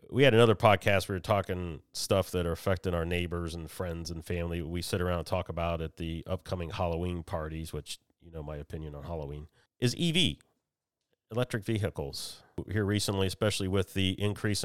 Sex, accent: male, American